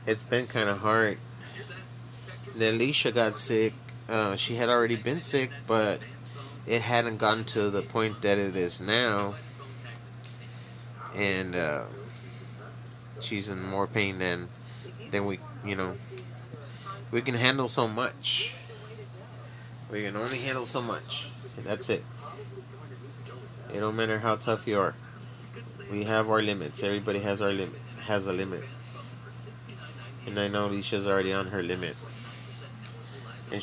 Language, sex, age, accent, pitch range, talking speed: English, male, 30-49, American, 110-120 Hz, 140 wpm